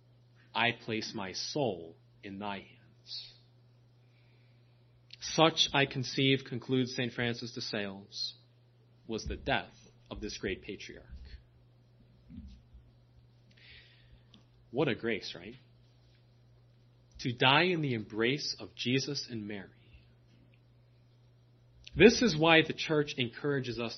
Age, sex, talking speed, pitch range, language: 30-49, male, 105 wpm, 110-125 Hz, English